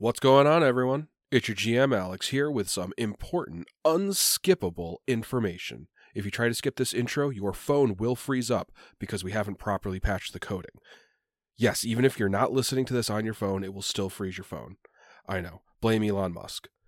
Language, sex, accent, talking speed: English, male, American, 195 wpm